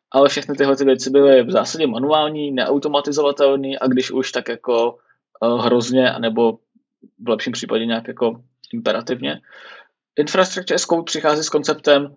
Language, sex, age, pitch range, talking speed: Czech, male, 20-39, 125-145 Hz, 145 wpm